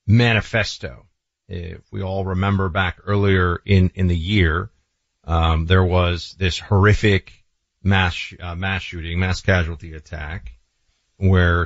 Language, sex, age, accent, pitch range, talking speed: English, male, 40-59, American, 90-110 Hz, 125 wpm